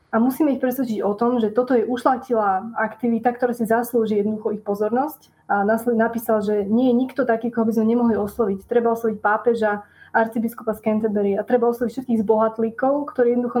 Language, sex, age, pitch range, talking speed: Slovak, female, 20-39, 215-245 Hz, 185 wpm